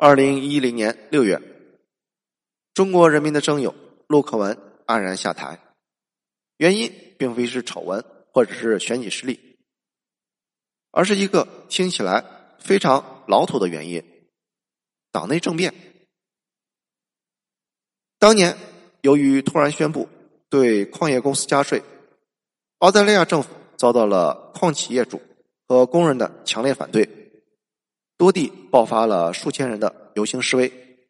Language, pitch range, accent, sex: Chinese, 120-160 Hz, native, male